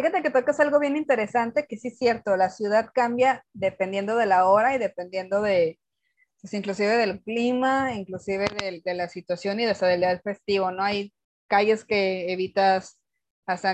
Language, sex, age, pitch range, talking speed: Spanish, female, 20-39, 190-240 Hz, 175 wpm